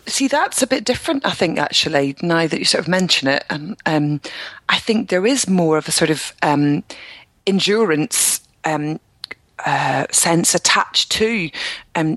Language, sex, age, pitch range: English, female, 30-49, 155-200 Hz